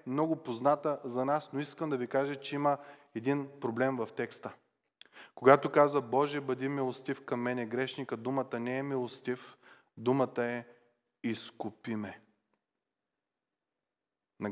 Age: 30-49